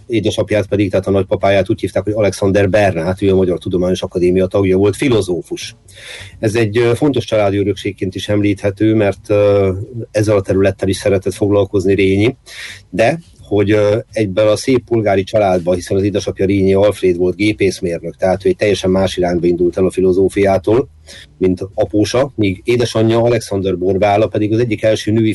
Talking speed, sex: 160 wpm, male